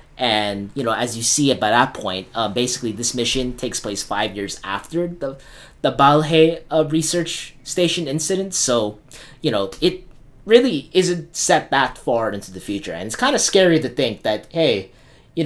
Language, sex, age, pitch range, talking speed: English, male, 20-39, 105-160 Hz, 185 wpm